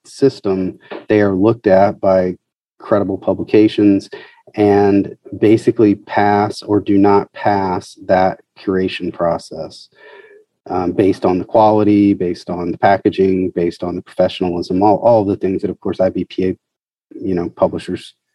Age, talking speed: 30-49, 130 wpm